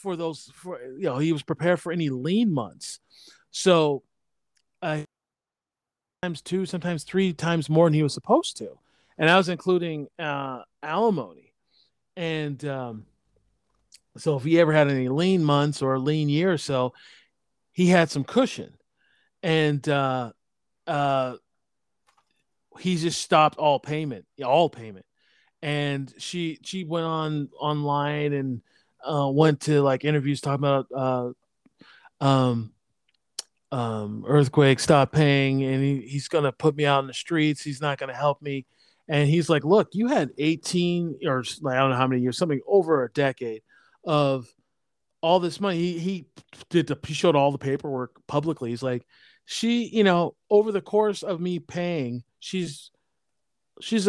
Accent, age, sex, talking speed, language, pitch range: American, 30-49, male, 160 wpm, English, 135-170 Hz